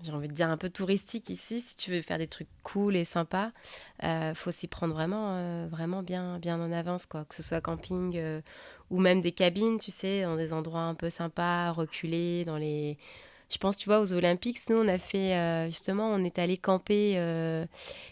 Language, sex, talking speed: French, female, 220 wpm